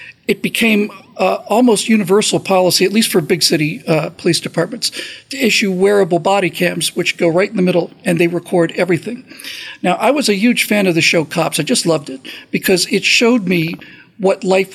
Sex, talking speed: male, 200 wpm